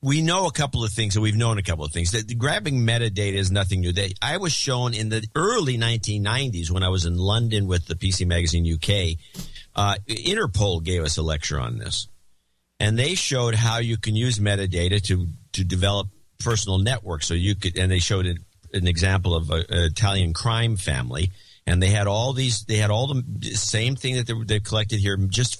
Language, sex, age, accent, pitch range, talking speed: English, male, 50-69, American, 95-120 Hz, 205 wpm